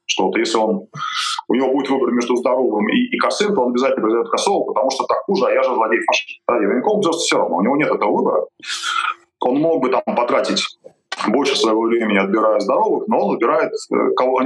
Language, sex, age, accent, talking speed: Russian, male, 20-39, native, 210 wpm